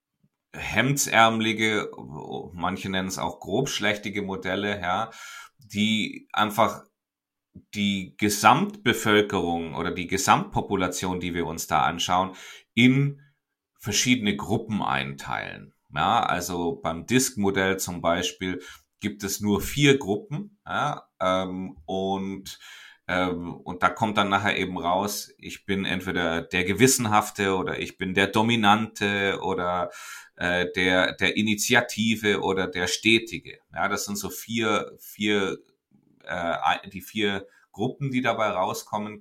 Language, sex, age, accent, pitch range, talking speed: German, male, 30-49, German, 90-105 Hz, 115 wpm